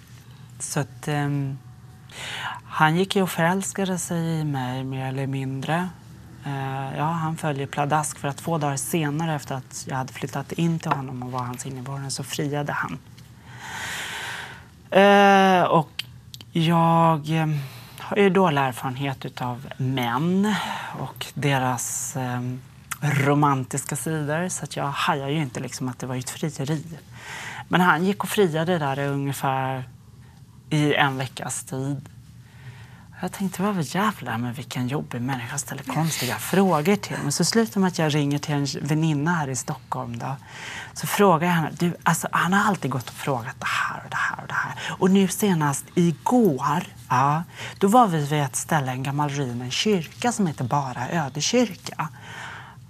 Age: 30-49